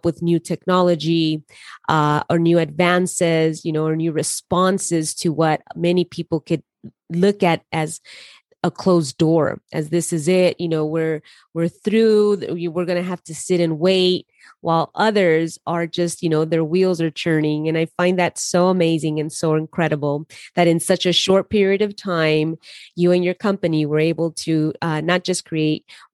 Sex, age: female, 30-49